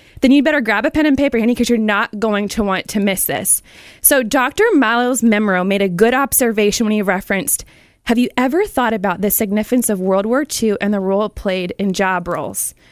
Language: English